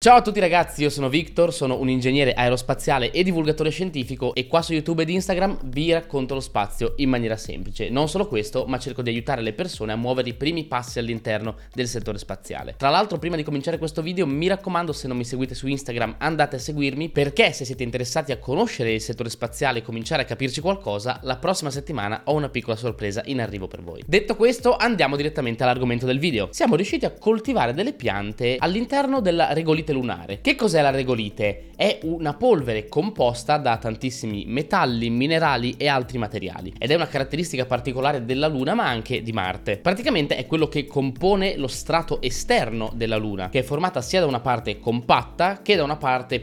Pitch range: 120-160 Hz